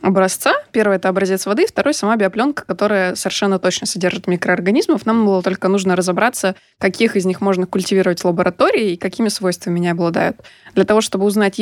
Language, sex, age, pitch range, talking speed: Russian, female, 20-39, 185-225 Hz, 175 wpm